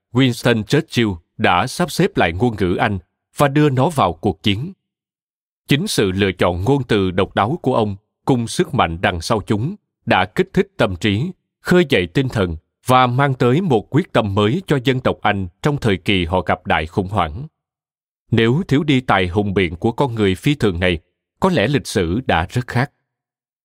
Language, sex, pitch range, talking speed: Vietnamese, male, 100-140 Hz, 200 wpm